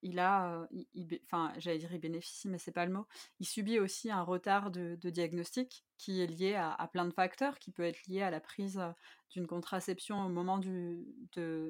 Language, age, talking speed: French, 20-39, 220 wpm